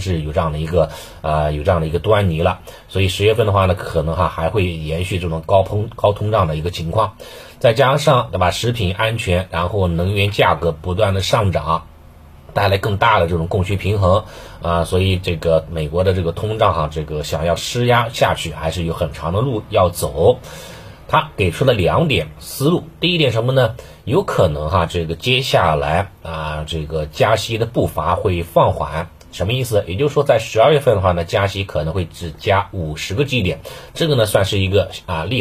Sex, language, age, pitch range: male, Chinese, 30-49, 85-110 Hz